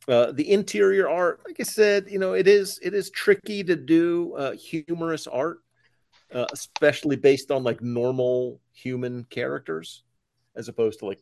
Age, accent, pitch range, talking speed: 50-69, American, 120-160 Hz, 170 wpm